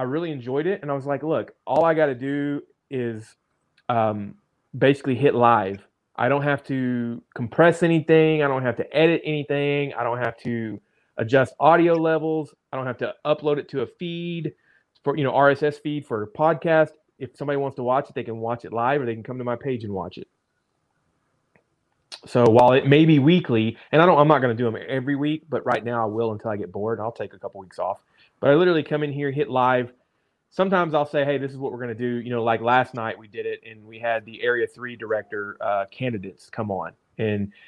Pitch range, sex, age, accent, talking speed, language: 115-150 Hz, male, 30-49, American, 235 wpm, English